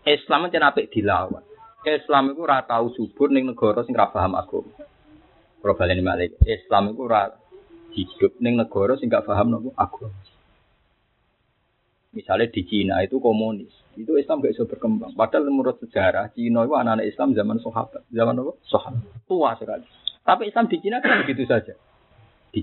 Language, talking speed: Indonesian, 150 wpm